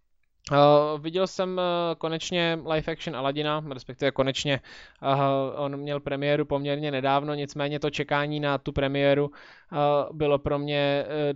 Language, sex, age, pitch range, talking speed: Czech, male, 20-39, 140-160 Hz, 145 wpm